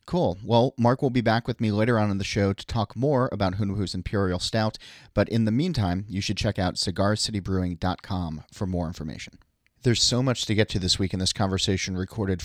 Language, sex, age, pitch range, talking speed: English, male, 30-49, 90-110 Hz, 210 wpm